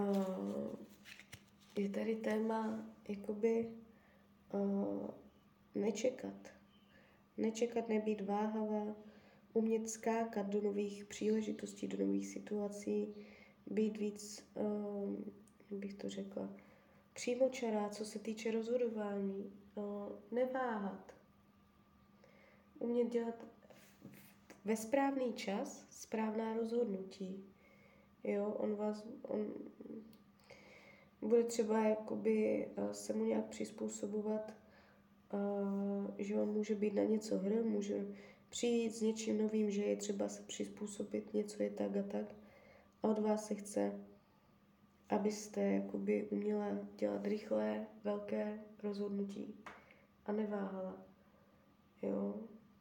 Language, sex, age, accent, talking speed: Czech, female, 20-39, native, 90 wpm